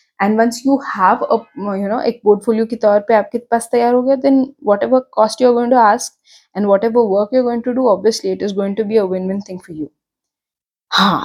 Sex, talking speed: female, 230 wpm